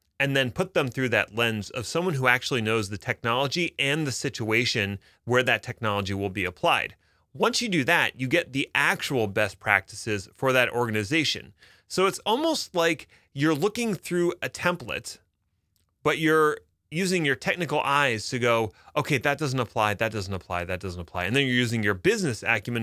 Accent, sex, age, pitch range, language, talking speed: American, male, 30-49, 105-155 Hz, English, 185 wpm